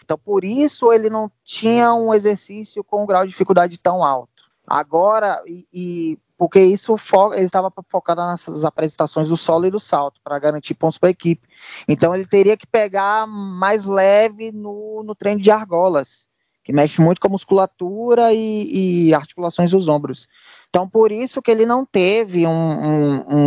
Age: 20-39